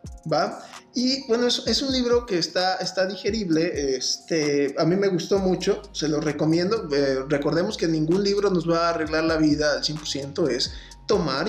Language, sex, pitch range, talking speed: Spanish, male, 155-200 Hz, 170 wpm